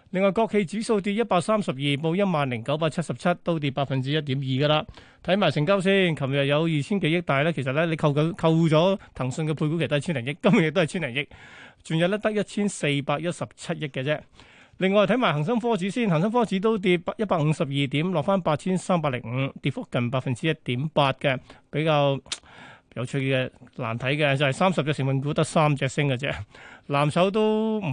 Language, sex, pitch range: Chinese, male, 140-185 Hz